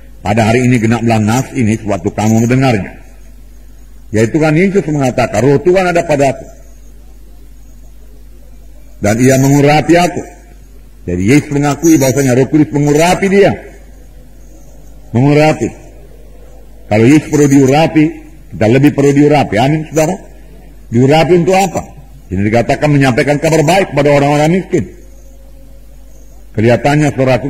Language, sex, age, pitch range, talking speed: English, male, 50-69, 120-145 Hz, 120 wpm